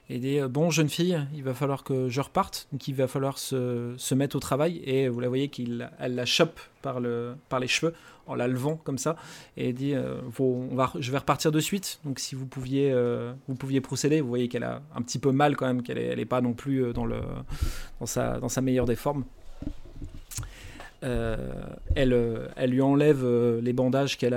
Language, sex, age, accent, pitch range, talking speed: French, male, 30-49, French, 120-145 Hz, 220 wpm